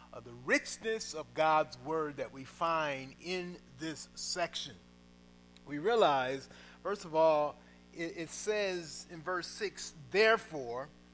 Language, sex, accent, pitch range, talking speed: English, male, American, 150-220 Hz, 130 wpm